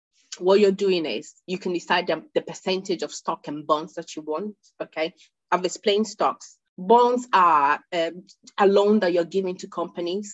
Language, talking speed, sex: English, 180 wpm, female